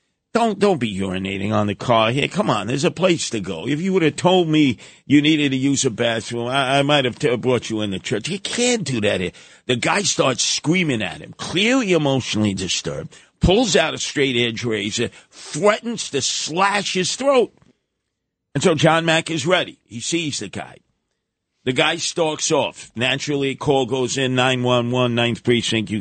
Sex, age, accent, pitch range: male, 50-69, American, 130-200 Hz